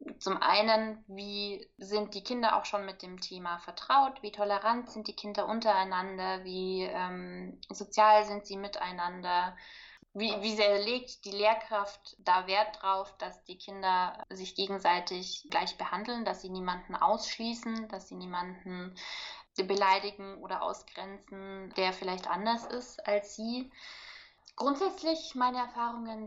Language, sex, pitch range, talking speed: German, female, 195-220 Hz, 135 wpm